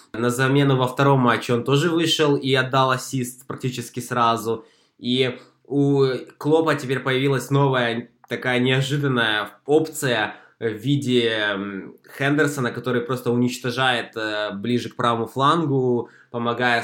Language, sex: Russian, male